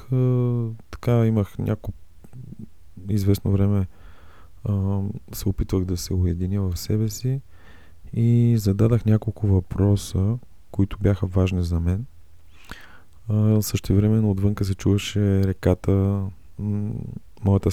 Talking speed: 100 wpm